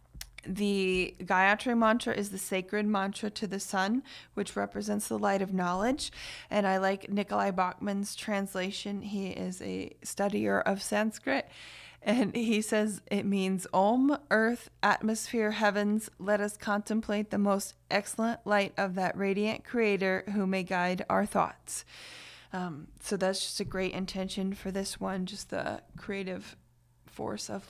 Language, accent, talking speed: English, American, 145 wpm